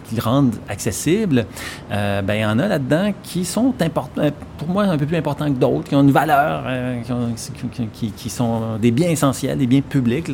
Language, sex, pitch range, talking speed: French, male, 115-145 Hz, 220 wpm